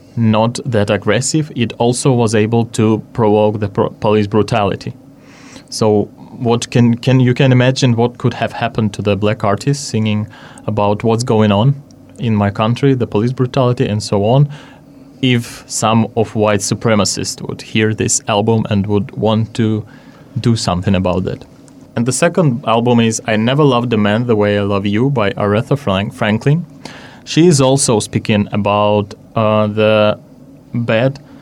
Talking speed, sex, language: 160 wpm, male, English